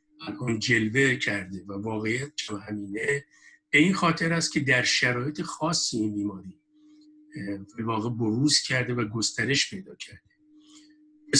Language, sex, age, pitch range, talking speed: Persian, male, 50-69, 115-150 Hz, 125 wpm